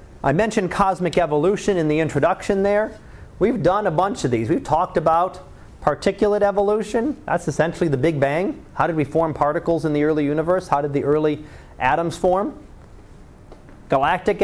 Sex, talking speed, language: male, 165 wpm, English